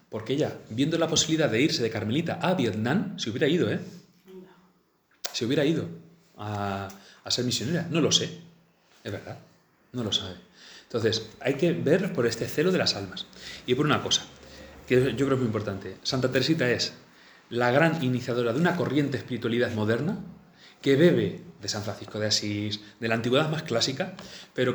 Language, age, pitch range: Spanish, 30-49, 110-165 Hz